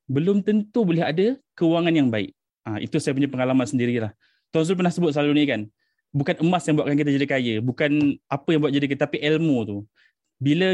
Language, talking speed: Malay, 205 wpm